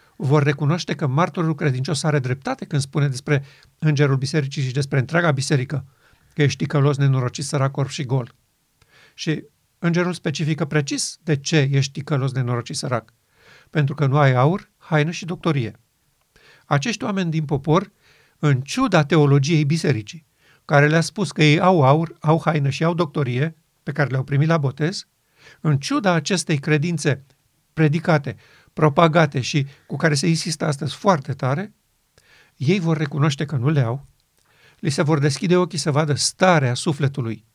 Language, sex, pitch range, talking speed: Romanian, male, 140-165 Hz, 155 wpm